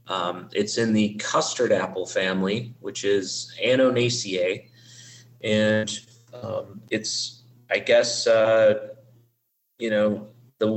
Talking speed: 105 wpm